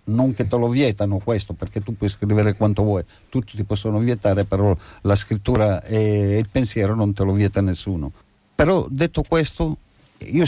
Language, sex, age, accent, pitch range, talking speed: Italian, male, 50-69, native, 100-130 Hz, 180 wpm